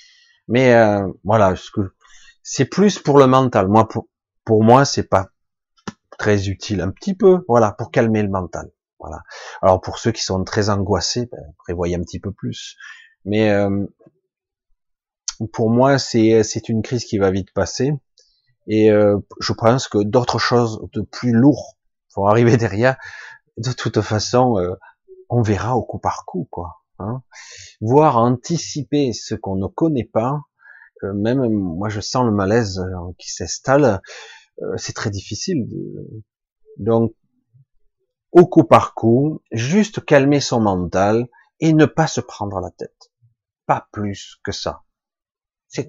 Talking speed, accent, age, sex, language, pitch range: 155 wpm, French, 30-49, male, French, 100-130 Hz